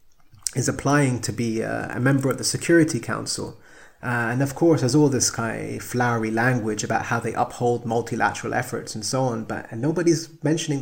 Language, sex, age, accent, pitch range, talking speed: English, male, 30-49, British, 115-140 Hz, 190 wpm